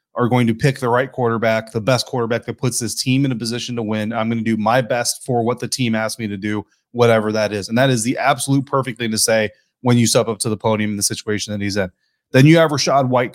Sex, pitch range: male, 115-135 Hz